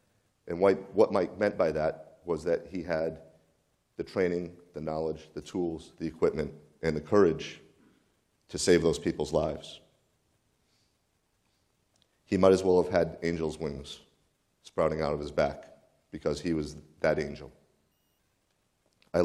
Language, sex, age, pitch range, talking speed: English, male, 40-59, 80-85 Hz, 140 wpm